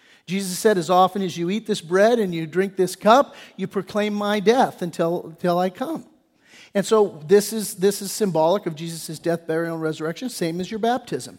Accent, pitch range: American, 170-215 Hz